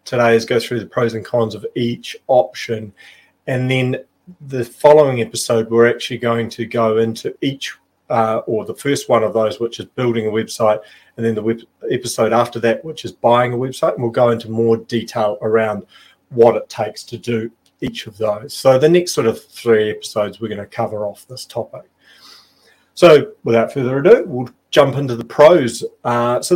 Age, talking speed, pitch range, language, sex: 30-49, 195 wpm, 115-130 Hz, English, male